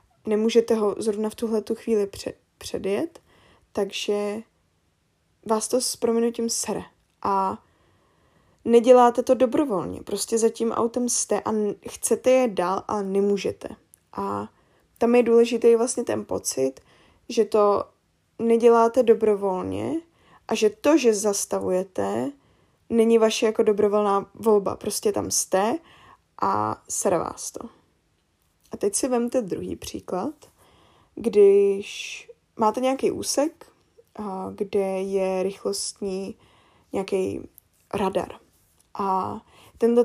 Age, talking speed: 10-29, 110 wpm